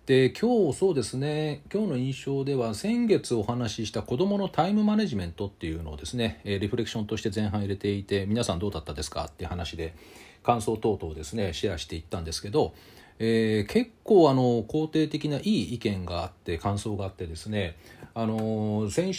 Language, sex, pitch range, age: Japanese, male, 95-140 Hz, 40-59